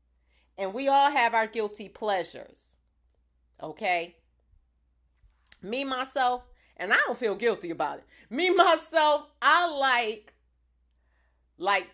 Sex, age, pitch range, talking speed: female, 40-59, 200-310 Hz, 110 wpm